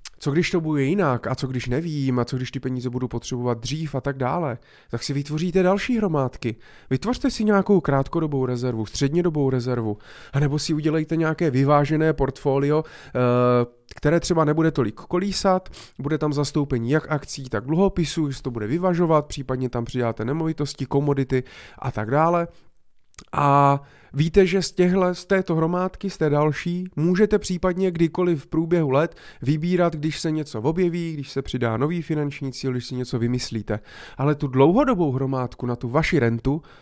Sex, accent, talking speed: male, native, 165 wpm